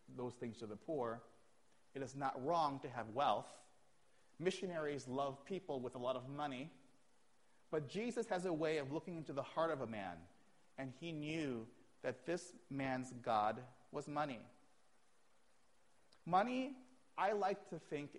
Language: English